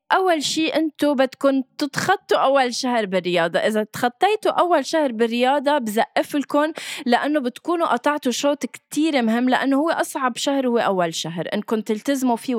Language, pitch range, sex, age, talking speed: Arabic, 215-290 Hz, female, 20-39, 150 wpm